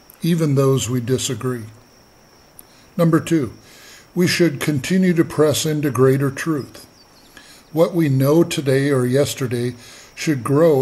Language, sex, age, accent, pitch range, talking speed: English, male, 50-69, American, 125-150 Hz, 120 wpm